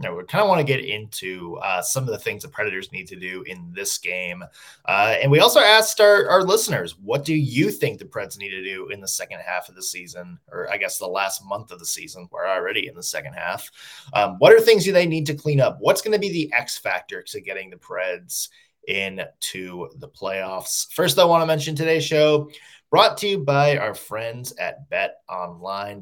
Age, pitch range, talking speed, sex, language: 20-39, 110-175 Hz, 230 wpm, male, English